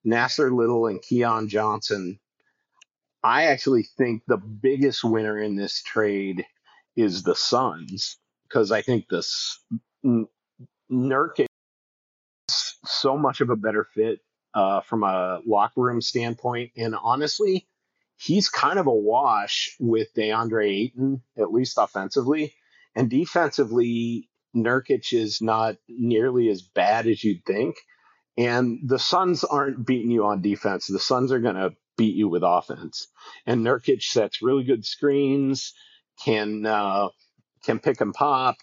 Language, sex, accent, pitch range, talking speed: English, male, American, 105-130 Hz, 135 wpm